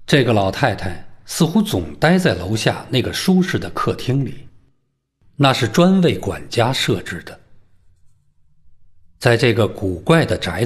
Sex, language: male, Chinese